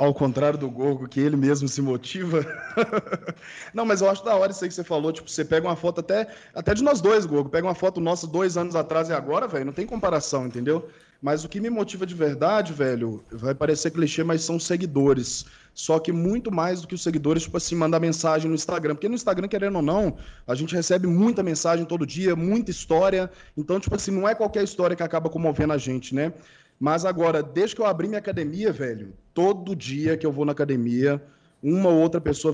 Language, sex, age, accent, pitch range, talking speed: Portuguese, male, 20-39, Brazilian, 155-200 Hz, 225 wpm